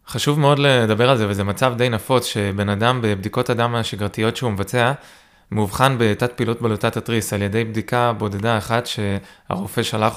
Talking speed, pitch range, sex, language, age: 165 wpm, 105-125 Hz, male, Hebrew, 20-39